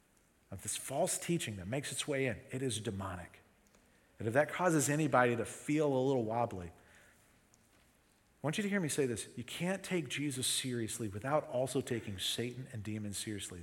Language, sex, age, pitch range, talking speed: English, male, 40-59, 120-150 Hz, 185 wpm